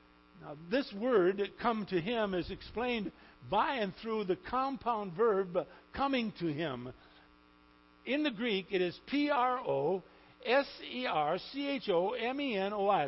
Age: 60-79